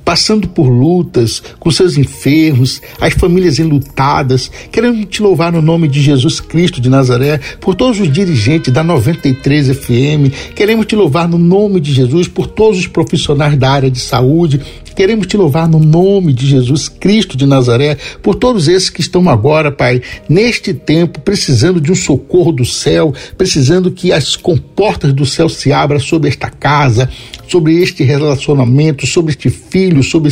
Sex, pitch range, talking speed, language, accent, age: male, 135-180 Hz, 165 wpm, Portuguese, Brazilian, 60-79